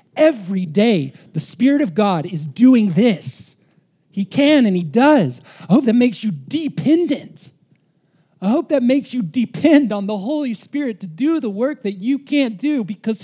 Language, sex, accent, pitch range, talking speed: English, male, American, 160-220 Hz, 175 wpm